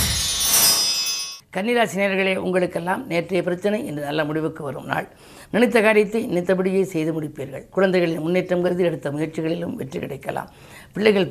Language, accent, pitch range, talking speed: Tamil, native, 160-190 Hz, 115 wpm